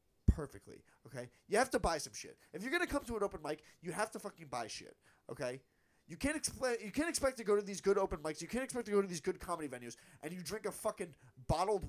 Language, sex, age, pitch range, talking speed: English, male, 30-49, 140-185 Hz, 265 wpm